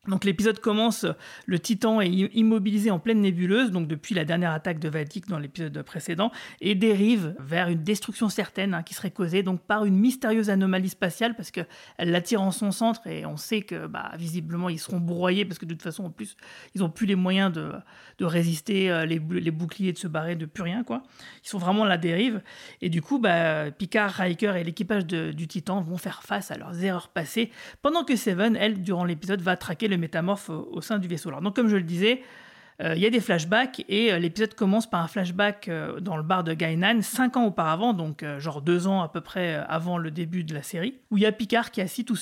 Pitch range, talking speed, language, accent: 170-215 Hz, 235 wpm, French, French